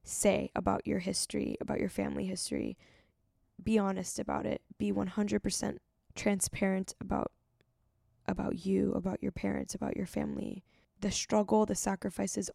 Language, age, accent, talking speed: English, 10-29, American, 135 wpm